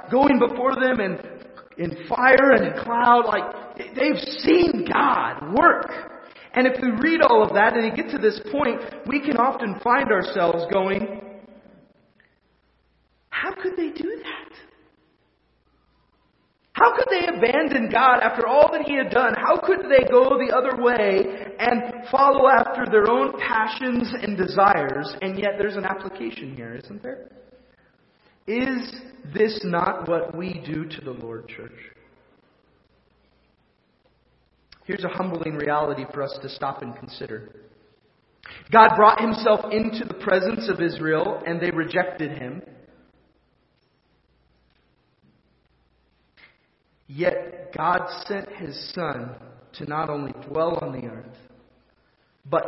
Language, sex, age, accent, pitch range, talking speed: English, male, 30-49, American, 155-250 Hz, 135 wpm